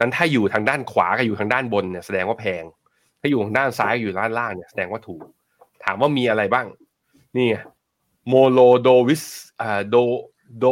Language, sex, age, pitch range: Thai, male, 20-39, 100-125 Hz